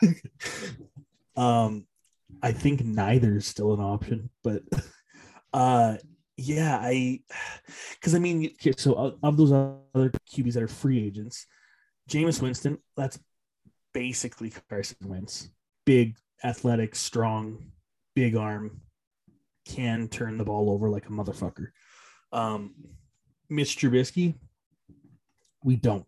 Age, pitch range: 20-39, 105-130 Hz